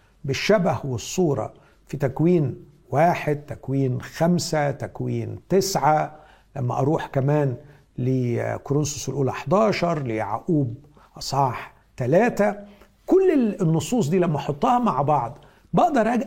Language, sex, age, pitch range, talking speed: Arabic, male, 60-79, 130-190 Hz, 95 wpm